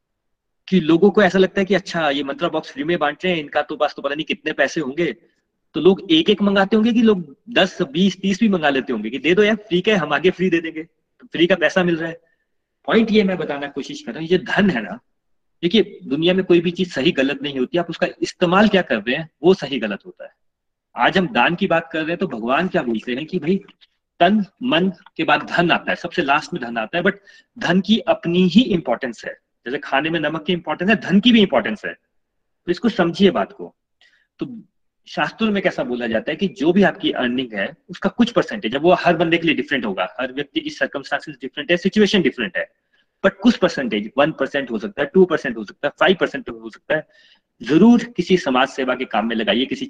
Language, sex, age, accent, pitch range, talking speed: Hindi, male, 30-49, native, 140-195 Hz, 215 wpm